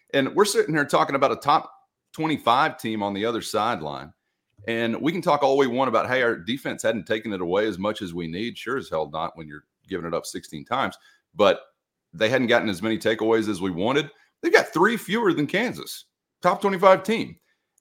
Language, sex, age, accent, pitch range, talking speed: English, male, 30-49, American, 100-155 Hz, 215 wpm